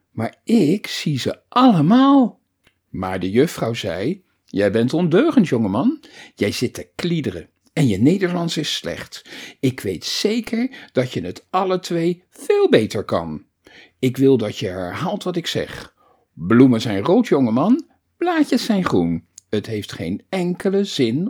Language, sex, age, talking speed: Dutch, male, 50-69, 150 wpm